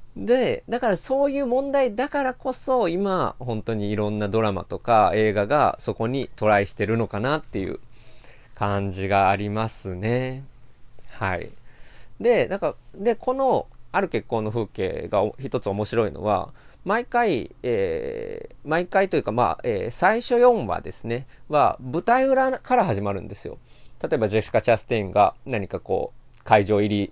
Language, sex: Japanese, male